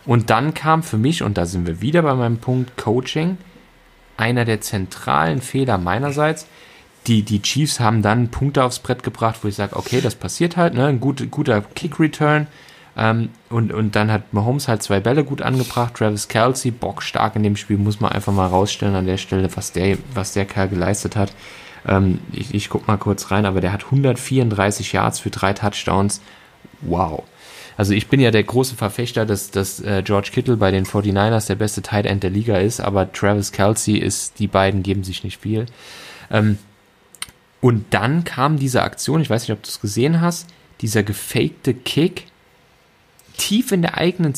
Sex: male